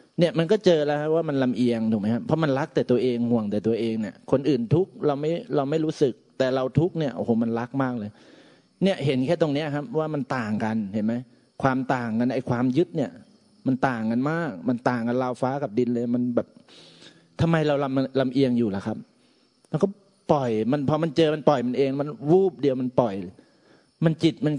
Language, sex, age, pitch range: Thai, male, 30-49, 120-155 Hz